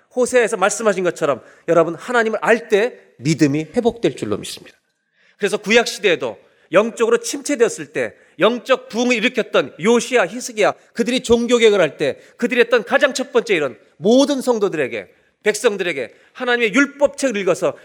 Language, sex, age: Korean, male, 30-49